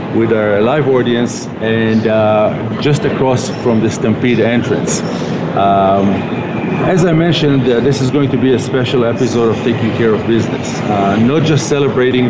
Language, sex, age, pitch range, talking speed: English, male, 50-69, 115-140 Hz, 165 wpm